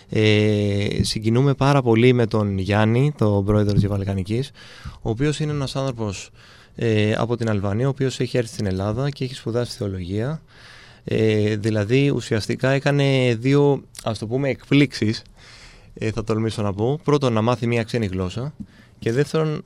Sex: male